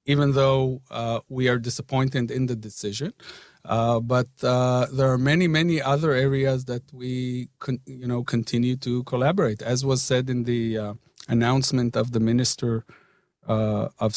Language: Danish